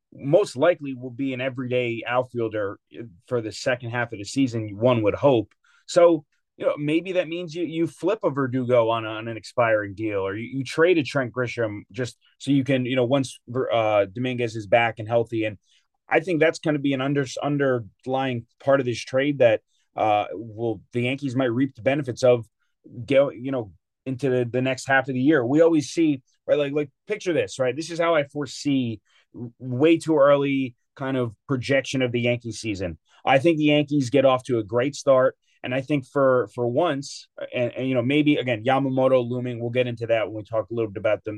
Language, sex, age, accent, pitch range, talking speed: English, male, 30-49, American, 115-140 Hz, 215 wpm